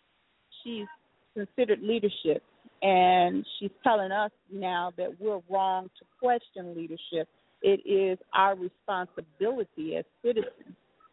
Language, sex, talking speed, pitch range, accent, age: English, female, 110 wpm, 200-280 Hz, American, 40-59